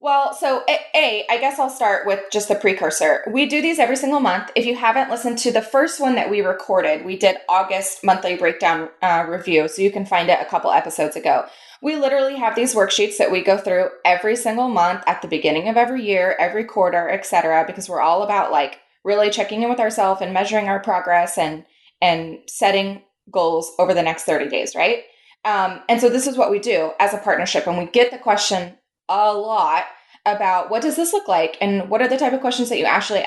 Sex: female